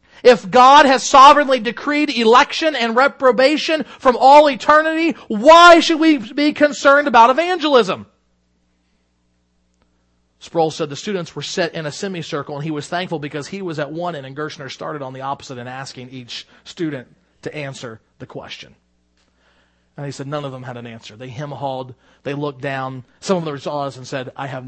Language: English